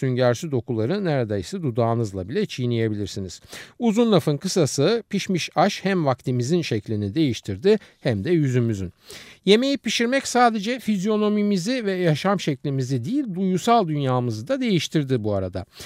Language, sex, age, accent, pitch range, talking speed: Turkish, male, 50-69, native, 115-180 Hz, 120 wpm